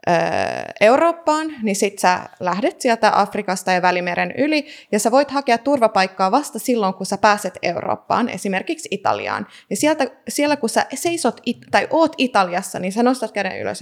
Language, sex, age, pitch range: Finnish, female, 20-39, 195-260 Hz